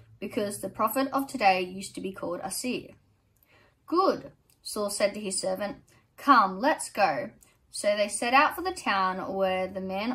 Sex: female